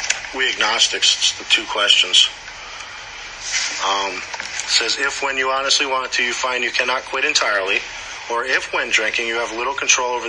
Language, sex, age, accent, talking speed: English, male, 40-59, American, 165 wpm